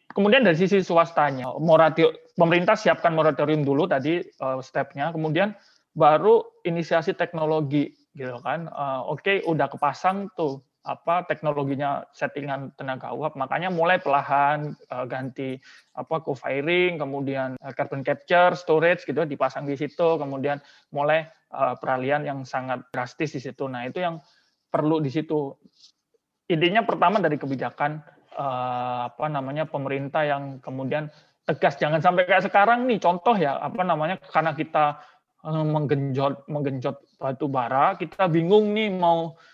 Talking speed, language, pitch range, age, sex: 125 wpm, Indonesian, 140-175 Hz, 20-39, male